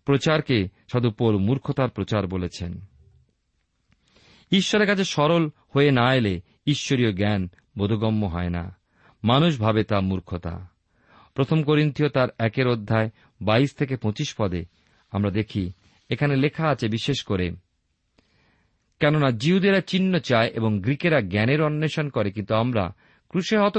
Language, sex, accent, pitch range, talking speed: Bengali, male, native, 95-145 Hz, 120 wpm